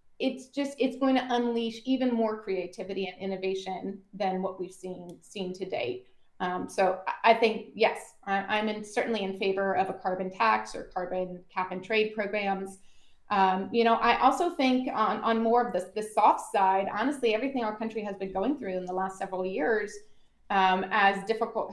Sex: female